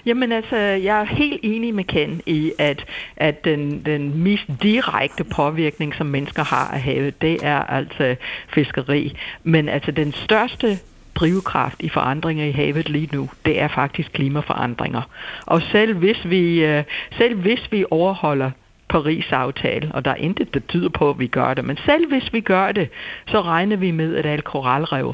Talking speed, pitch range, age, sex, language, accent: 175 wpm, 155-205 Hz, 60-79, female, Danish, native